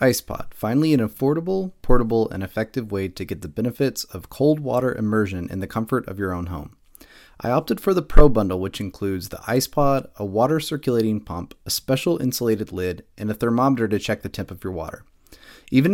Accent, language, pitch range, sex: American, English, 100-135 Hz, male